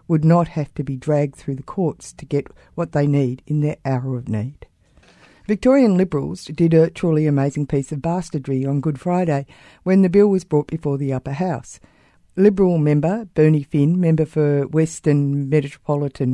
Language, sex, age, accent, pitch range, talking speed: English, female, 50-69, Australian, 140-175 Hz, 175 wpm